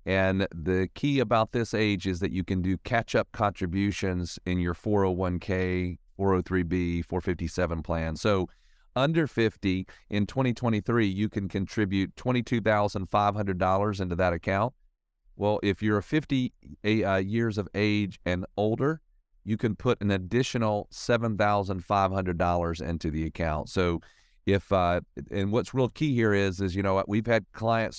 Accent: American